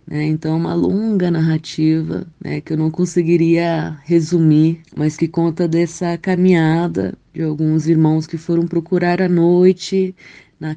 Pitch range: 160-180 Hz